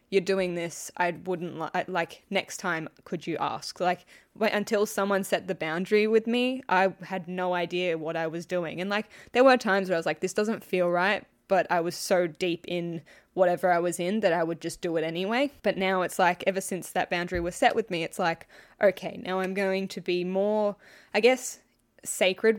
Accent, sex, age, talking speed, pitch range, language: Australian, female, 10-29, 220 wpm, 175-205 Hz, English